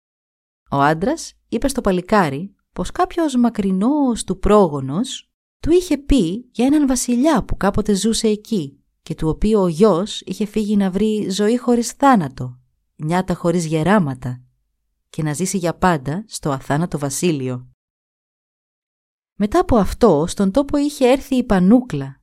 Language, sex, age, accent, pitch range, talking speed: Greek, female, 30-49, native, 160-230 Hz, 140 wpm